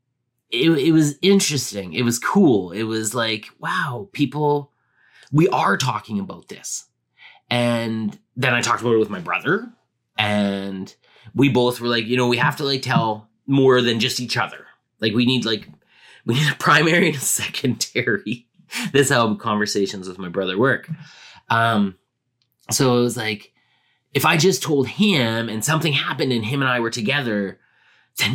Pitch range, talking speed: 115-150 Hz, 170 wpm